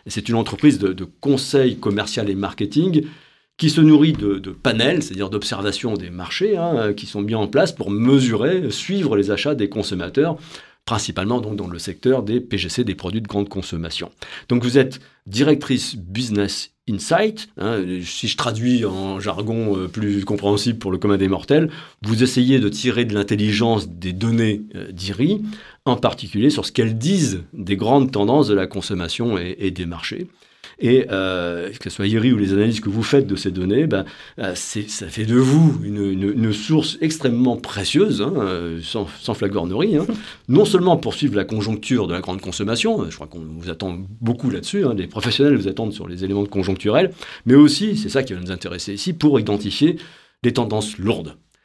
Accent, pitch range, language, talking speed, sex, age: French, 100-130 Hz, French, 185 wpm, male, 40-59